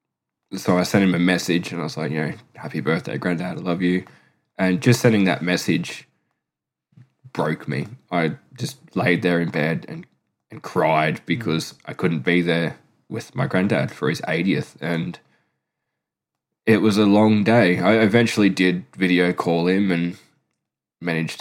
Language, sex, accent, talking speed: English, male, Australian, 165 wpm